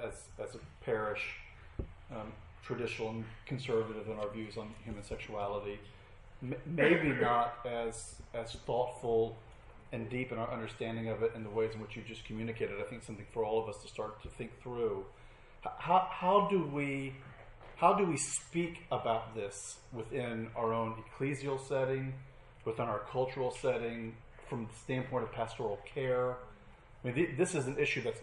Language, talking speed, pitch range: English, 170 wpm, 115-140 Hz